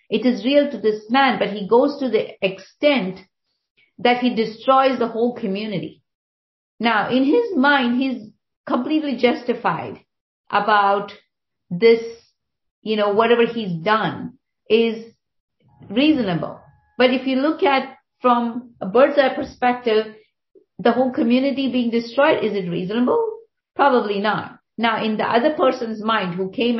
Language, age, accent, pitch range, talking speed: English, 50-69, Indian, 200-255 Hz, 140 wpm